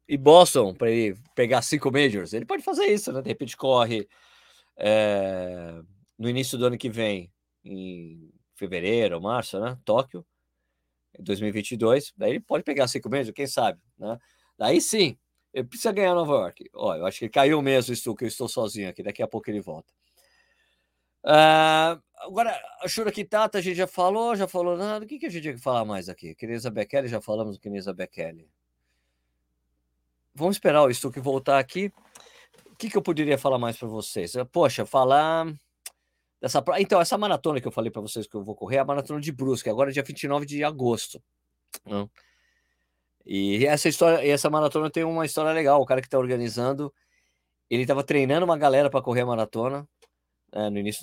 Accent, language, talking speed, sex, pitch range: Brazilian, Portuguese, 185 wpm, male, 105-155 Hz